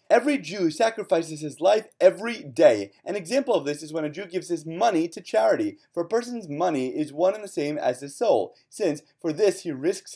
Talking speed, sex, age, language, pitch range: 220 wpm, male, 30-49, English, 150-205 Hz